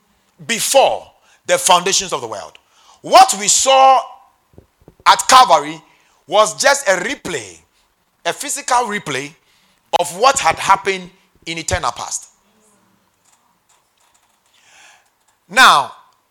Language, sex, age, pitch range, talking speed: English, male, 40-59, 150-245 Hz, 95 wpm